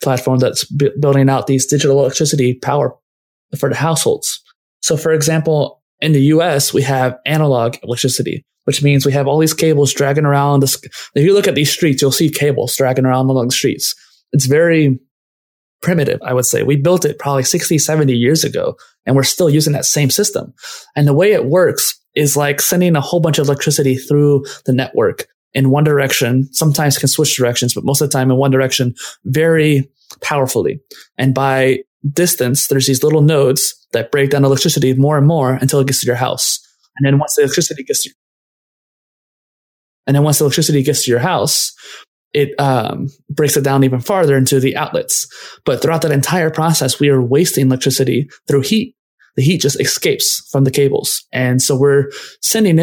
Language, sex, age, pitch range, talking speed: English, male, 20-39, 130-155 Hz, 180 wpm